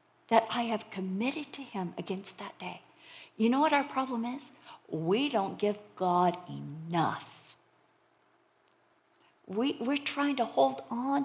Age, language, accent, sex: 50-69, English, American, female